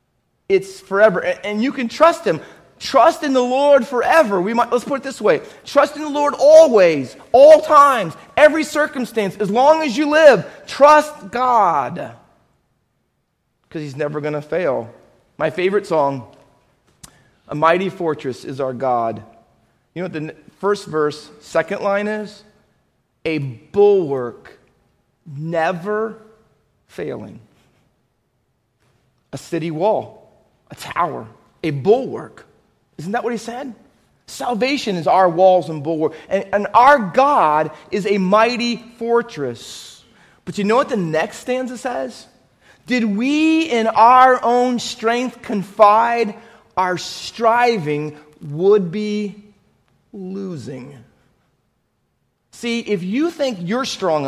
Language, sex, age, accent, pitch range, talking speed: English, male, 40-59, American, 155-250 Hz, 125 wpm